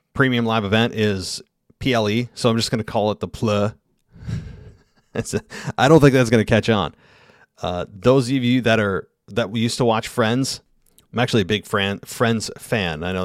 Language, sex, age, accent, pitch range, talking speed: English, male, 40-59, American, 100-120 Hz, 200 wpm